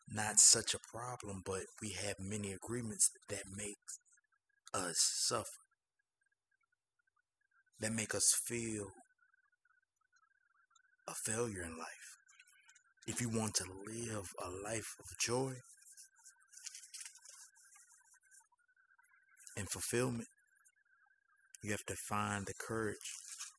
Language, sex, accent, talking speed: English, male, American, 95 wpm